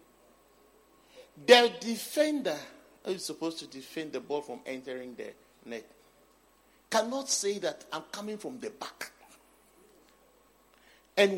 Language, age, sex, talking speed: English, 50-69, male, 115 wpm